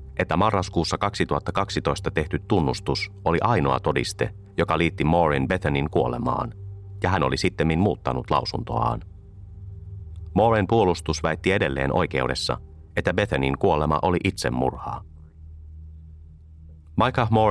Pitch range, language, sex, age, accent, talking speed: 70-95 Hz, Finnish, male, 30-49, native, 105 wpm